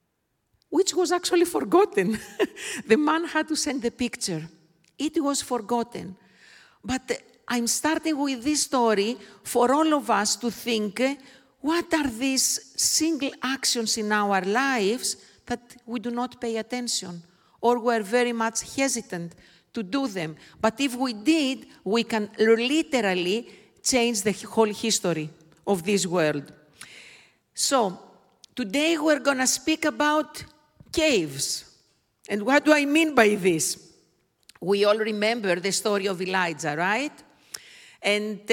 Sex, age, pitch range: female, 50-69, 205-270 Hz